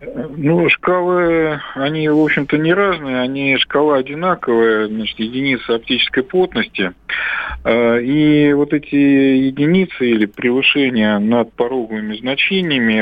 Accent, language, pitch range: native, Russian, 105-145 Hz